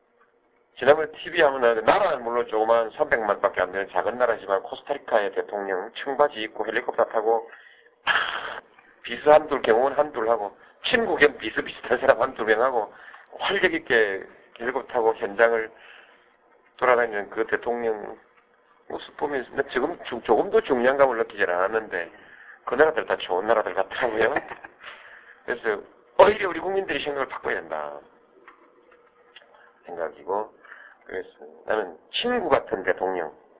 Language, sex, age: Korean, male, 40-59